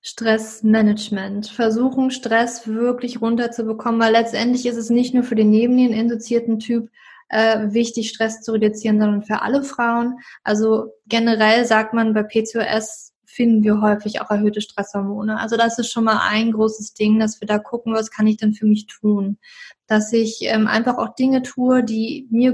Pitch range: 220-245 Hz